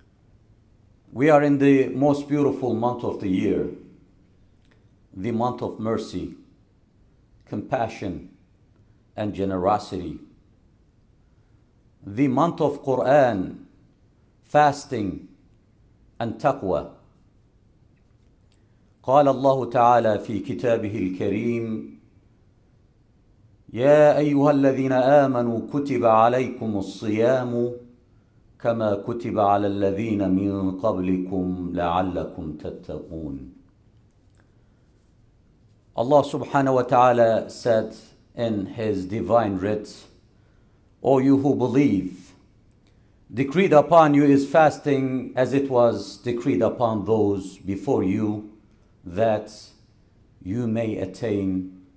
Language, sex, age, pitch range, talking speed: English, male, 50-69, 100-125 Hz, 85 wpm